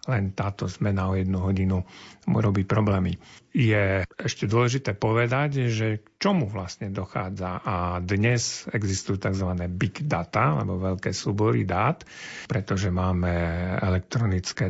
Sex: male